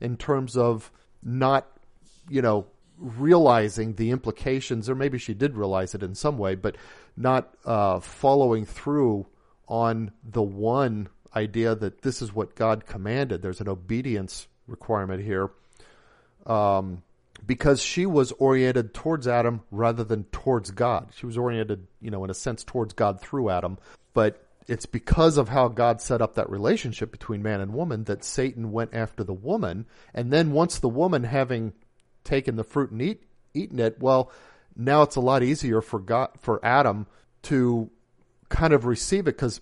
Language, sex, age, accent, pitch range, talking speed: English, male, 40-59, American, 105-130 Hz, 165 wpm